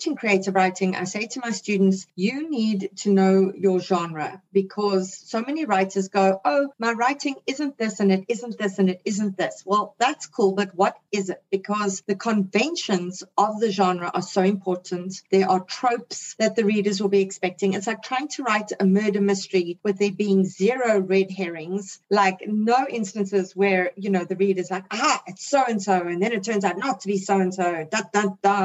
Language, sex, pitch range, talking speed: English, female, 190-225 Hz, 195 wpm